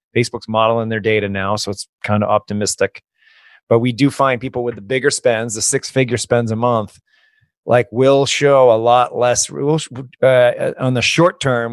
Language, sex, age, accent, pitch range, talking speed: English, male, 30-49, American, 110-130 Hz, 190 wpm